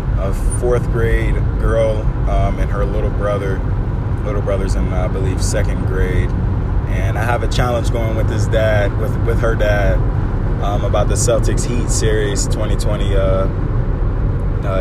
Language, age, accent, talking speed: English, 20-39, American, 155 wpm